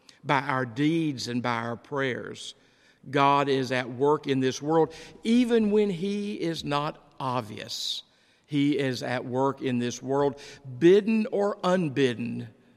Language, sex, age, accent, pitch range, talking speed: English, male, 60-79, American, 125-150 Hz, 140 wpm